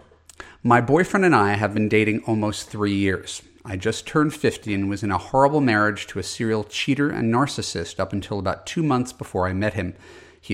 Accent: American